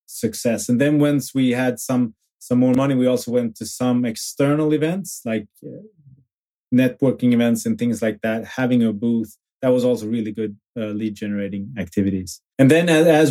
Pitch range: 110-130 Hz